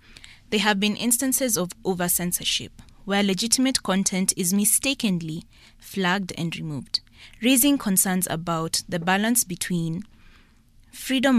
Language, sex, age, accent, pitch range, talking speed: English, female, 20-39, South African, 170-210 Hz, 110 wpm